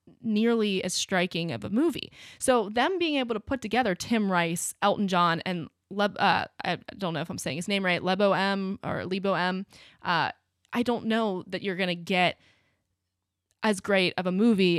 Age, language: 20-39, English